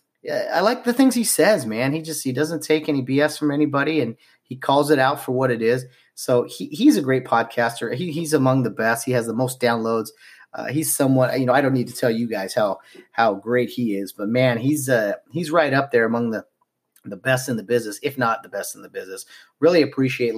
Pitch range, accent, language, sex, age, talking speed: 115-150 Hz, American, English, male, 30-49, 240 wpm